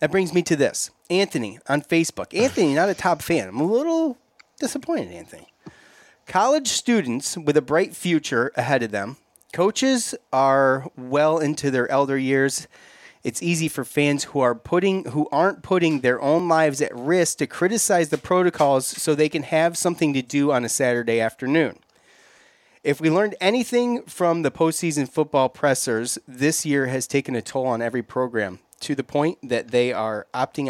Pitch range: 125-165 Hz